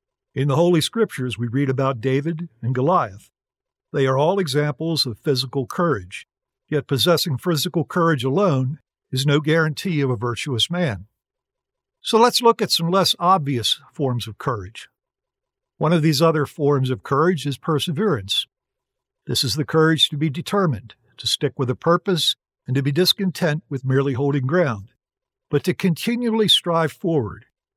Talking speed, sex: 160 wpm, male